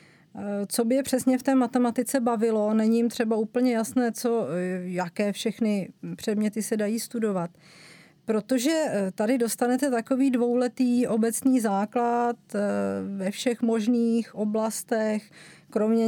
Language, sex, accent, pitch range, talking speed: Czech, female, native, 200-240 Hz, 115 wpm